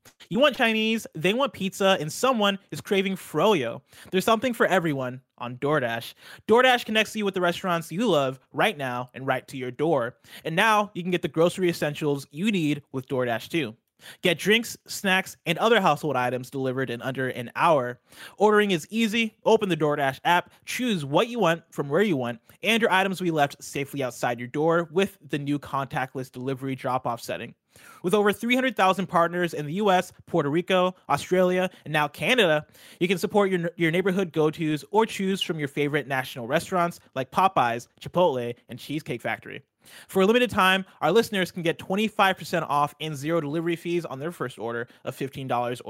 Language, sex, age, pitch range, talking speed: English, male, 20-39, 135-195 Hz, 185 wpm